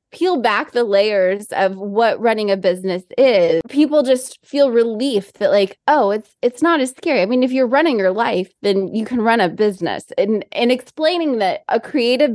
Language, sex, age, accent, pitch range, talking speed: English, female, 20-39, American, 185-235 Hz, 200 wpm